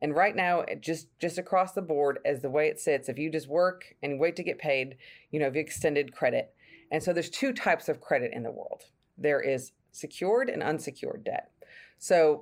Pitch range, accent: 145-175 Hz, American